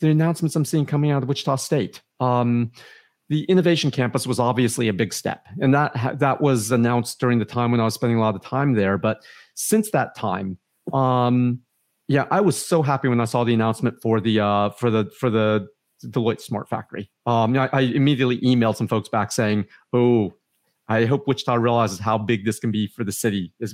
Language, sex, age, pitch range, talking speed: English, male, 40-59, 115-145 Hz, 215 wpm